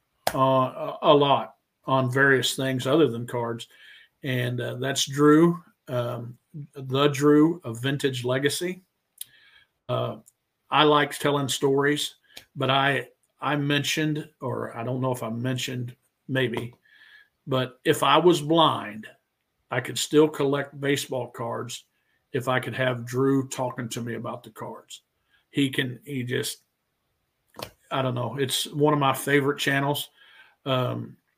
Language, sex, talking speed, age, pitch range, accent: English, male, 140 wpm, 50-69, 130-145 Hz, American